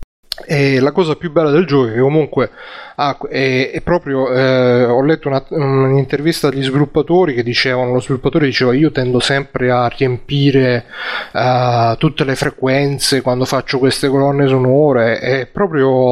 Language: Italian